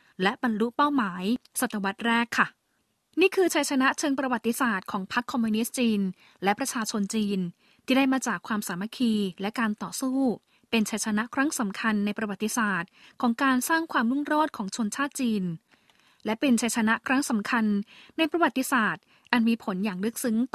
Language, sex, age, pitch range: Thai, female, 20-39, 215-270 Hz